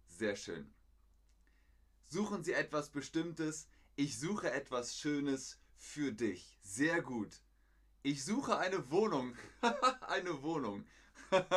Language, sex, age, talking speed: German, male, 30-49, 105 wpm